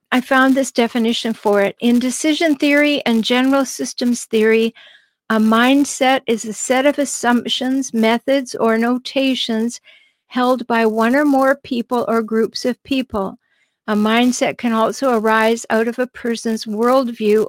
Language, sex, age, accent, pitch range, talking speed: English, female, 50-69, American, 225-270 Hz, 150 wpm